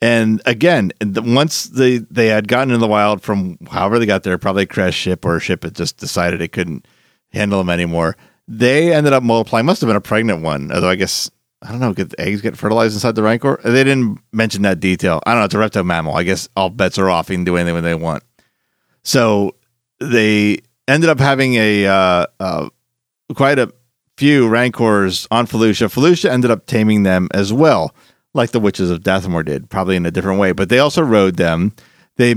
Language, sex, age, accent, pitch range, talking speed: English, male, 40-59, American, 95-120 Hz, 215 wpm